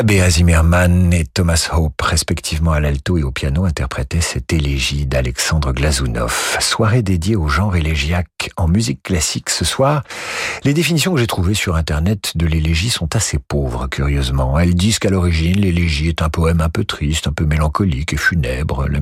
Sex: male